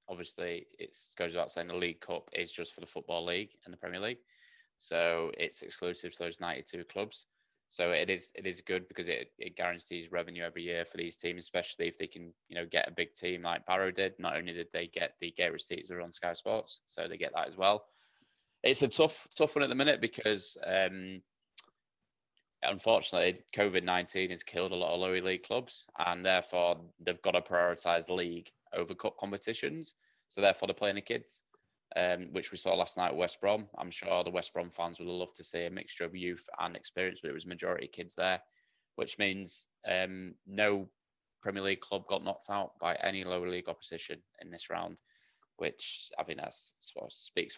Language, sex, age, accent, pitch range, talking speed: English, male, 20-39, British, 85-100 Hz, 210 wpm